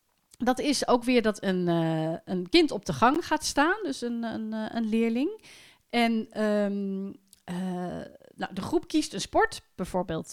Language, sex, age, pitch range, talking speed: Dutch, female, 40-59, 180-240 Hz, 170 wpm